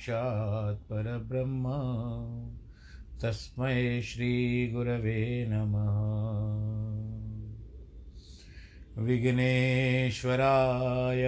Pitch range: 105-125 Hz